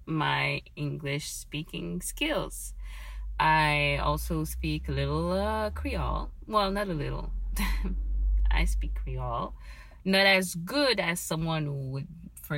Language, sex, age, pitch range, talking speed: English, female, 30-49, 140-180 Hz, 125 wpm